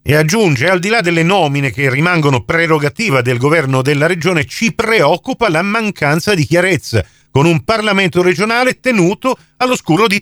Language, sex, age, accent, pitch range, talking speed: Italian, male, 40-59, native, 140-205 Hz, 160 wpm